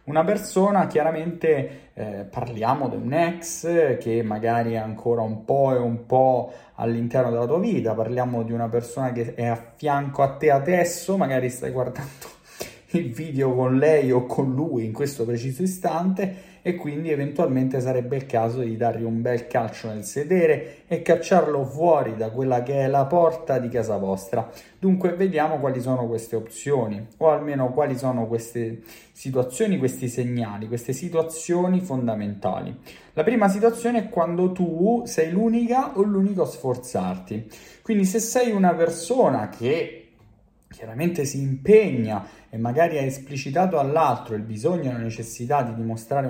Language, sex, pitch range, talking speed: Italian, male, 120-165 Hz, 155 wpm